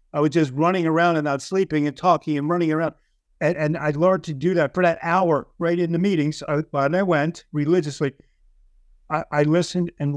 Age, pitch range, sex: 50-69, 150-175 Hz, male